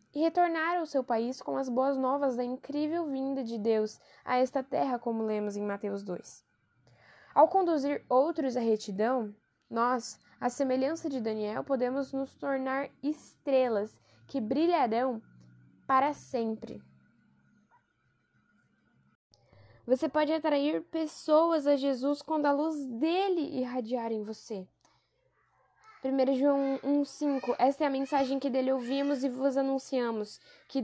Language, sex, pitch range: Portuguese, female, 245-300 Hz